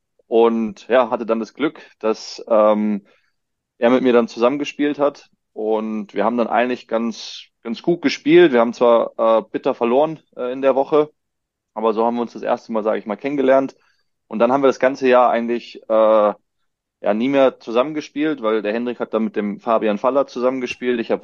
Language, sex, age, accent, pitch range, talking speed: German, male, 20-39, German, 110-130 Hz, 200 wpm